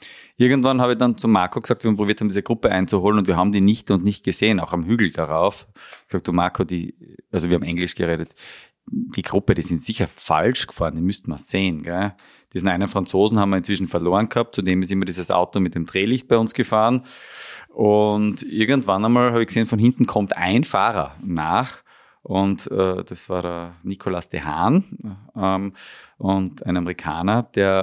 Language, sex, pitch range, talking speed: German, male, 90-115 Hz, 200 wpm